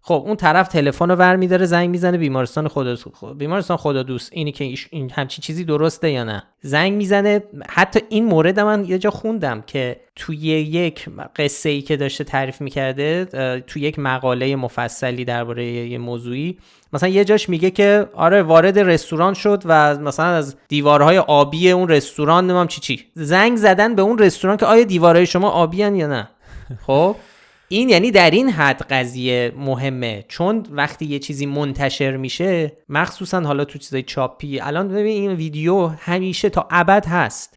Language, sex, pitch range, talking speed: Persian, male, 135-180 Hz, 170 wpm